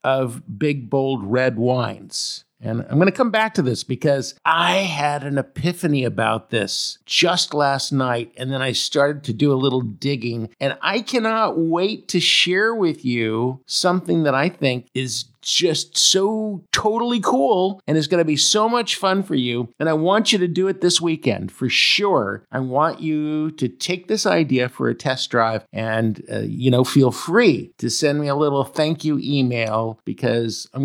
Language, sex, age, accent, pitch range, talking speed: English, male, 50-69, American, 120-160 Hz, 190 wpm